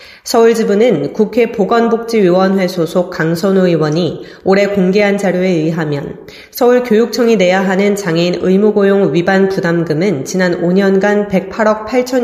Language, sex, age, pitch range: Korean, female, 30-49, 170-220 Hz